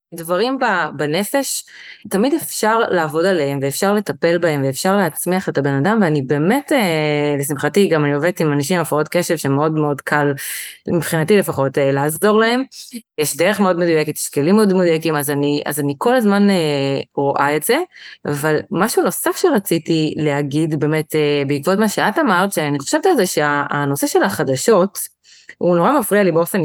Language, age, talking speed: Hebrew, 20-39, 160 wpm